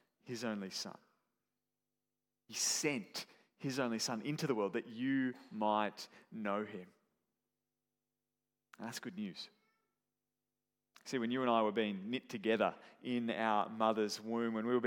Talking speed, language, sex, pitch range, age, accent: 145 wpm, English, male, 110-140 Hz, 30-49, Australian